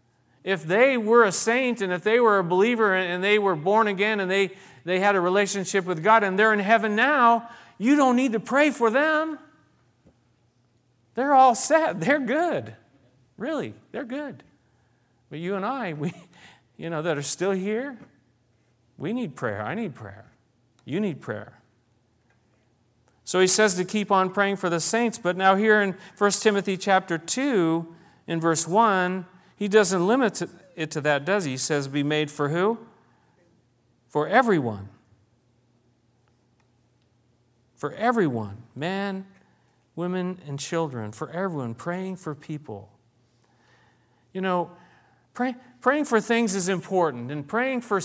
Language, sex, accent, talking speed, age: English, male, American, 150 wpm, 40-59